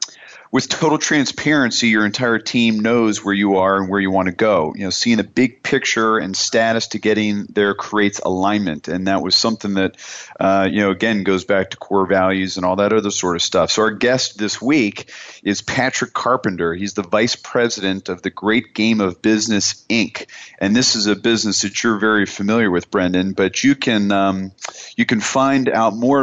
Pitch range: 95-110 Hz